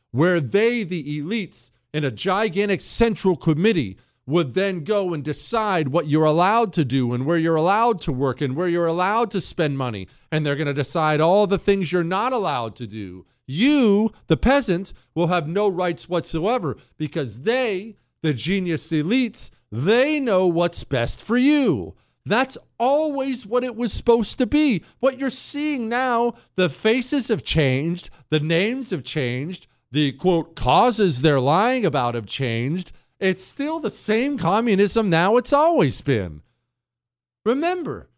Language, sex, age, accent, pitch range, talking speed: English, male, 40-59, American, 145-225 Hz, 160 wpm